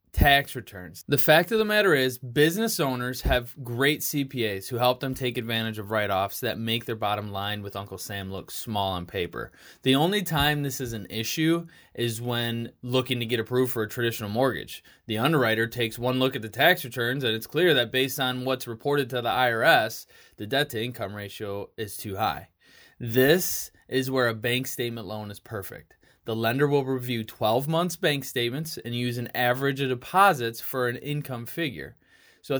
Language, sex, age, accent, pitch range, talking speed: English, male, 20-39, American, 115-140 Hz, 195 wpm